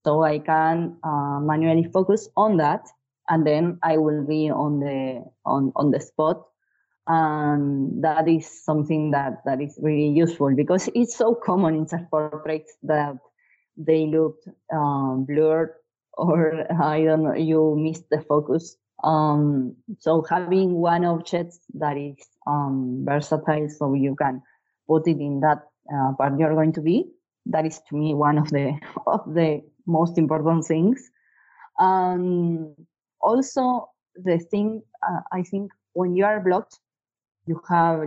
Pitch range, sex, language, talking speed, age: 150-180 Hz, female, English, 150 wpm, 20-39